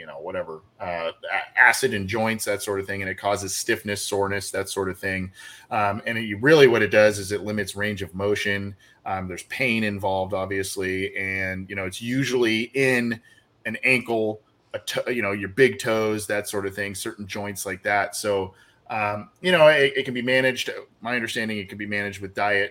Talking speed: 200 wpm